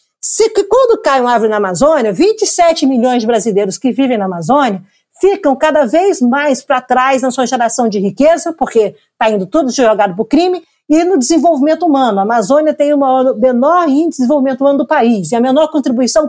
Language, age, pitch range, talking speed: Portuguese, 50-69, 240-335 Hz, 190 wpm